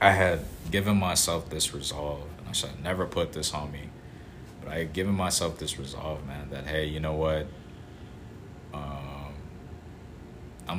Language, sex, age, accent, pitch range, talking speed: English, male, 20-39, American, 75-90 Hz, 160 wpm